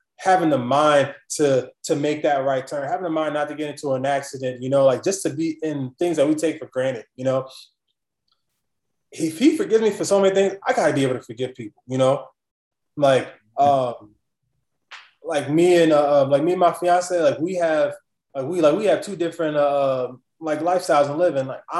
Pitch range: 140-190 Hz